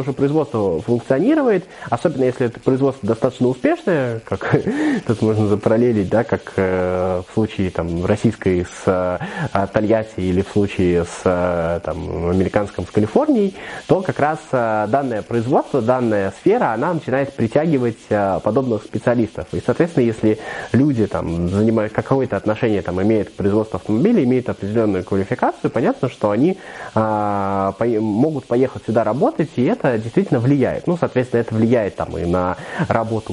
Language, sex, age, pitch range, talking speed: Russian, male, 20-39, 95-125 Hz, 145 wpm